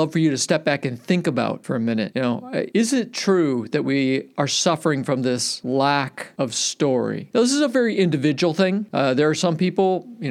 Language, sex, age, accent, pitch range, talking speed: English, male, 50-69, American, 135-175 Hz, 225 wpm